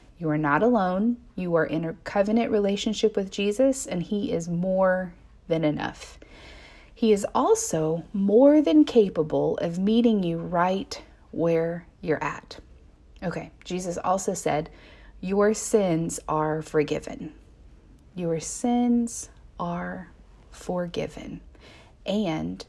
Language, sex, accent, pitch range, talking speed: English, female, American, 150-215 Hz, 115 wpm